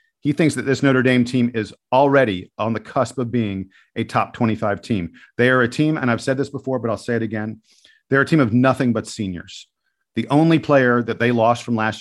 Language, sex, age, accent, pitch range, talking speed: English, male, 40-59, American, 110-125 Hz, 235 wpm